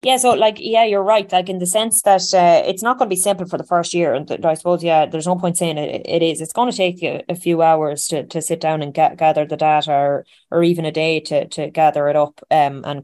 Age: 20-39